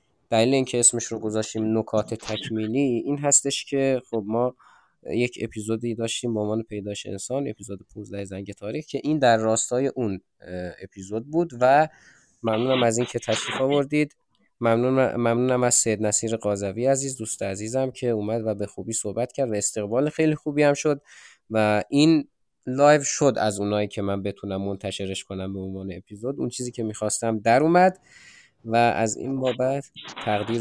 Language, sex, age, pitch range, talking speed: Persian, male, 20-39, 105-135 Hz, 165 wpm